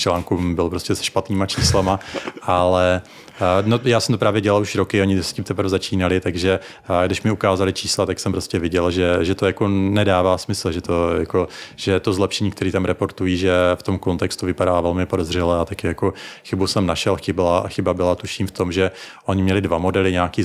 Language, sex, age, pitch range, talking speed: Czech, male, 30-49, 90-100 Hz, 205 wpm